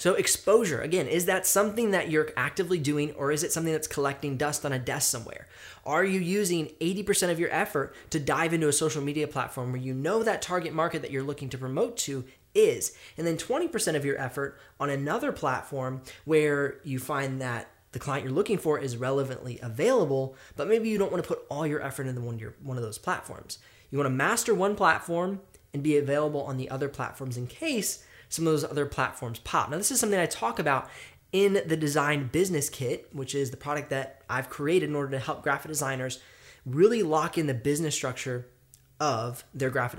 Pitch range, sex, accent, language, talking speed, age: 130-165 Hz, male, American, English, 210 wpm, 10-29